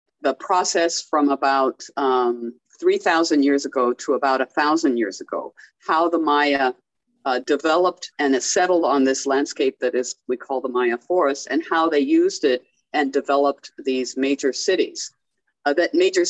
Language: English